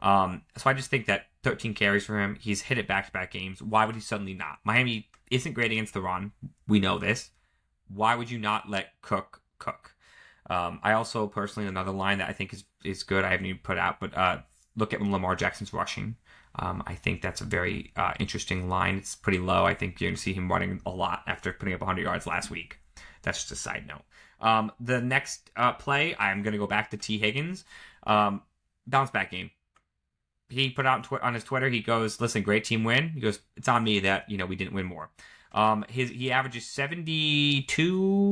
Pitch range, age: 95-115 Hz, 20-39